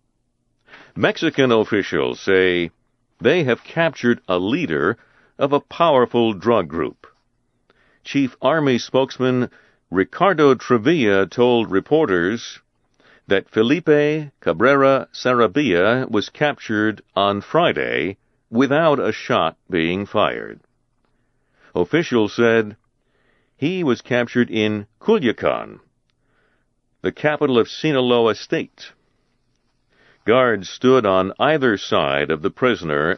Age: 60-79